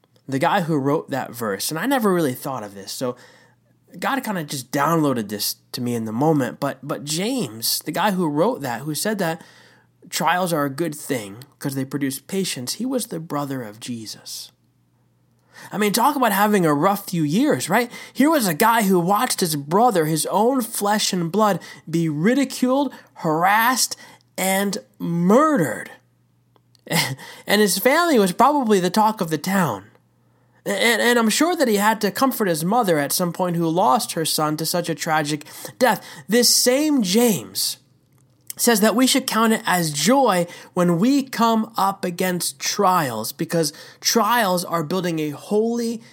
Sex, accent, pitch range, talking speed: male, American, 135-215 Hz, 175 wpm